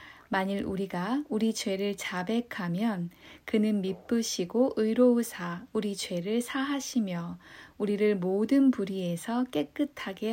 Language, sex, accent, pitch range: Korean, female, native, 185-235 Hz